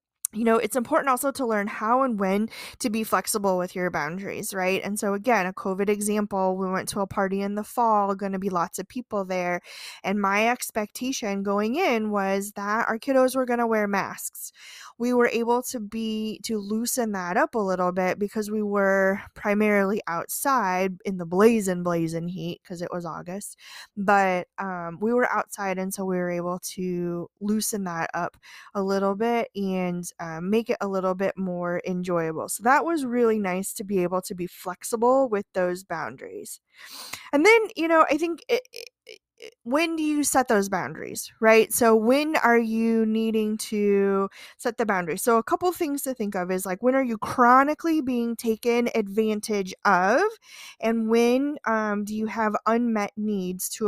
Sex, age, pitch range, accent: female, 20-39, 190-235 Hz, American